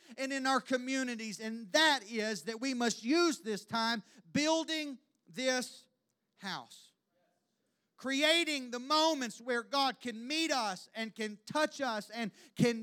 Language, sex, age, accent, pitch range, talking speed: English, male, 40-59, American, 200-270 Hz, 140 wpm